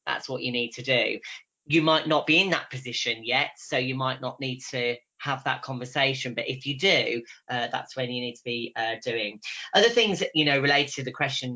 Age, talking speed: 30-49, 235 wpm